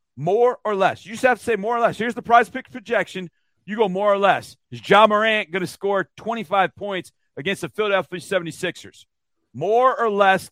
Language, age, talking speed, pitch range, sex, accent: English, 40-59, 210 wpm, 155-200 Hz, male, American